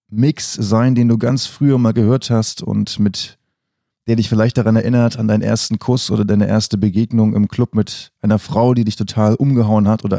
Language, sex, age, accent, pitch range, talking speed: German, male, 30-49, German, 105-120 Hz, 205 wpm